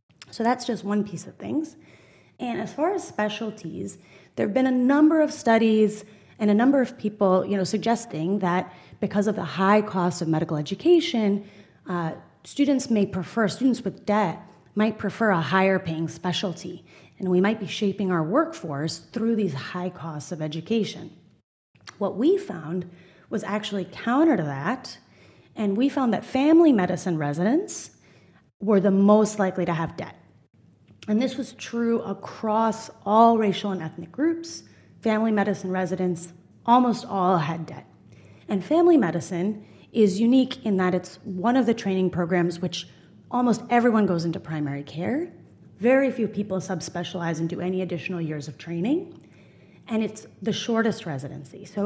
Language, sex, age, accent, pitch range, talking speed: English, female, 30-49, American, 175-230 Hz, 160 wpm